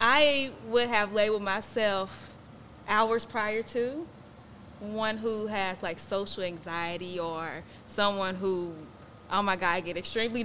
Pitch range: 195-250 Hz